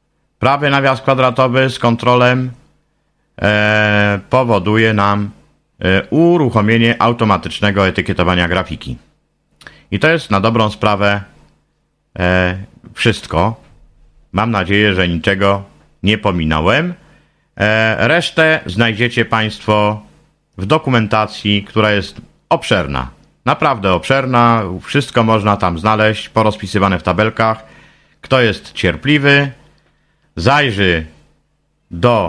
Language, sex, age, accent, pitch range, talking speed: Polish, male, 50-69, native, 95-125 Hz, 85 wpm